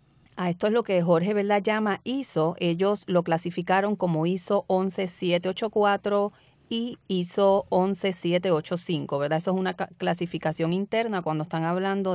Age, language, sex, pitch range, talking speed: 30-49, Spanish, female, 165-200 Hz, 135 wpm